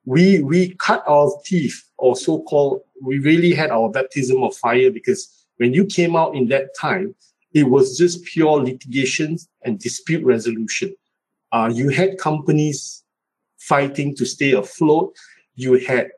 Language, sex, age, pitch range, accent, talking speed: English, male, 50-69, 130-185 Hz, Malaysian, 150 wpm